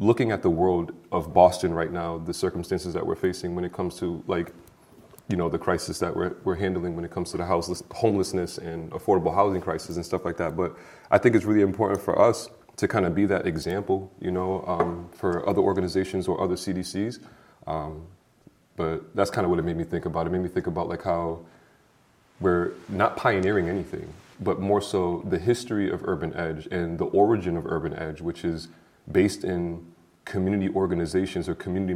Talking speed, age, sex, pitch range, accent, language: 205 wpm, 30-49, male, 85-95 Hz, American, English